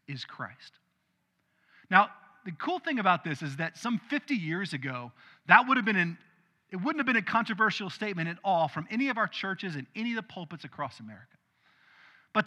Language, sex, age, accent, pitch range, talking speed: English, male, 40-59, American, 155-220 Hz, 190 wpm